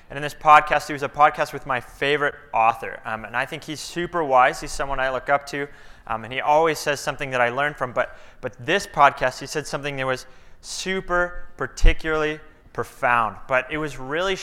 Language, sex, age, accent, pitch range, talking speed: English, male, 20-39, American, 125-155 Hz, 210 wpm